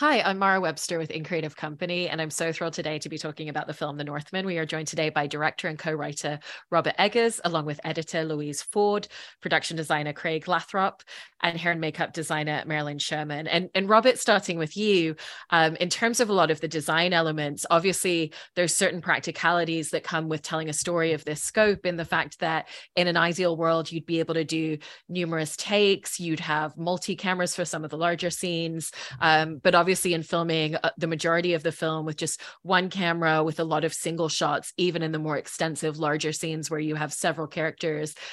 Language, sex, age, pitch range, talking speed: English, female, 30-49, 155-175 Hz, 210 wpm